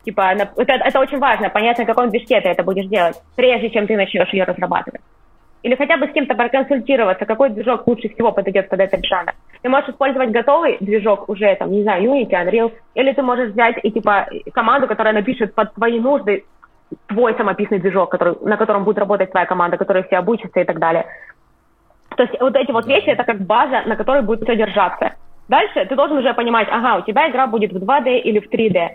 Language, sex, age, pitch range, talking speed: Russian, female, 20-39, 205-250 Hz, 205 wpm